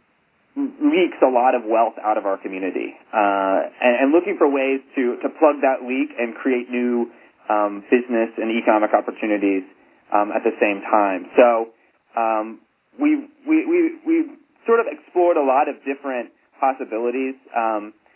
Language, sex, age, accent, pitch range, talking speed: English, male, 30-49, American, 110-140 Hz, 160 wpm